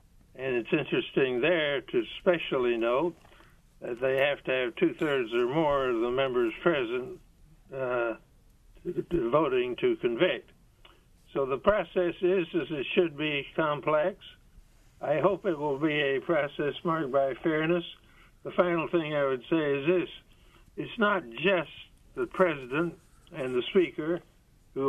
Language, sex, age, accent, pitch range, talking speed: English, male, 60-79, American, 135-185 Hz, 145 wpm